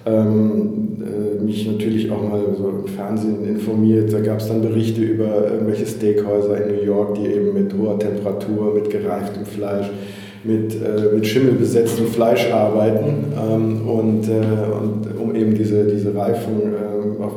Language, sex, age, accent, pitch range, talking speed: German, male, 50-69, German, 105-115 Hz, 160 wpm